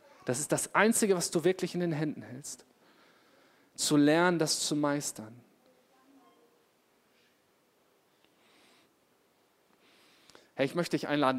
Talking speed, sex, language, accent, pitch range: 110 wpm, male, German, German, 140-195 Hz